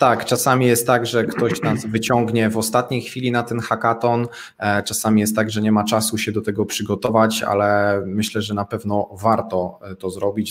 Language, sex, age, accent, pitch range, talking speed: Polish, male, 20-39, native, 100-120 Hz, 190 wpm